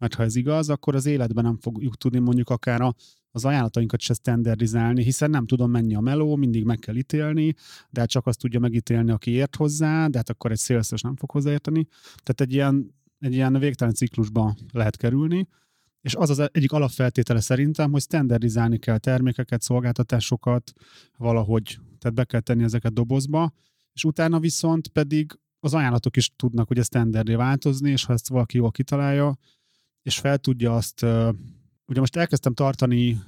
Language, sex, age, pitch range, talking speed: Hungarian, male, 30-49, 115-140 Hz, 170 wpm